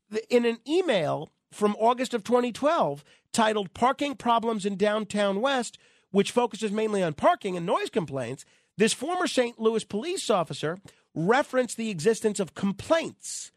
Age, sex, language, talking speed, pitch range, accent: 40-59, male, English, 140 wpm, 190-290 Hz, American